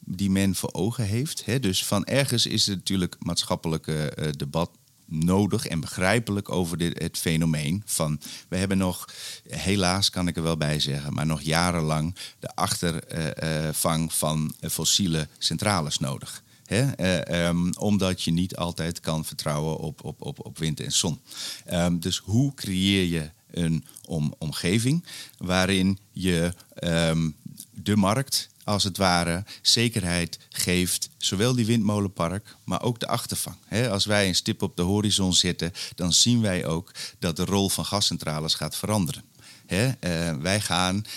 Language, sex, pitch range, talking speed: Dutch, male, 80-105 Hz, 140 wpm